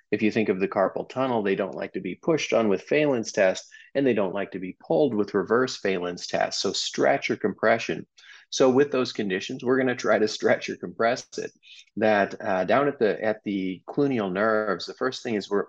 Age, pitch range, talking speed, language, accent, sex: 40-59, 95-125 Hz, 220 wpm, English, American, male